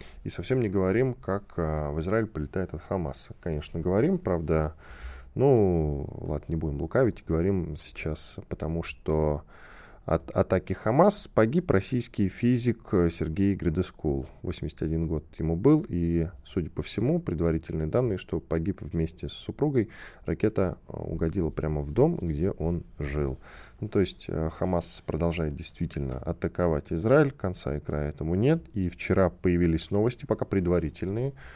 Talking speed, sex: 135 wpm, male